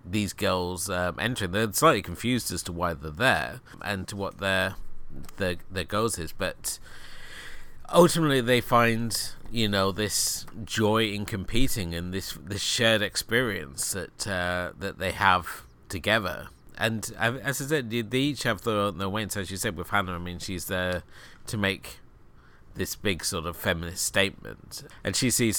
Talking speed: 170 wpm